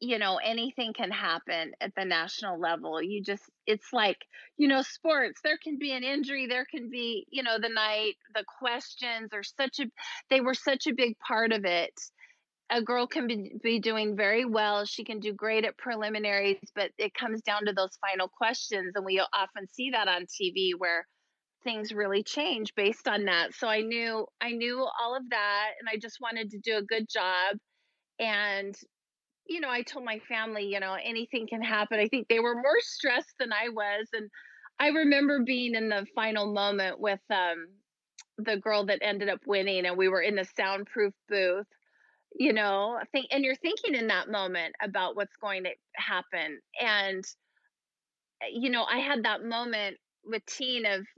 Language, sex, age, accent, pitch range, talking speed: English, female, 30-49, American, 200-245 Hz, 190 wpm